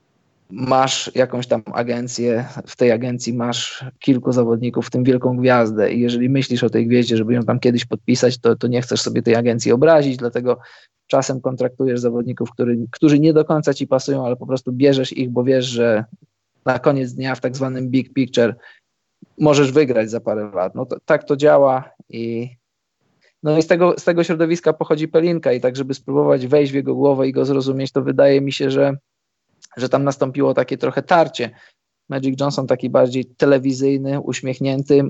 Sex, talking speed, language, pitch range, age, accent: male, 175 wpm, Polish, 120-140 Hz, 20-39, native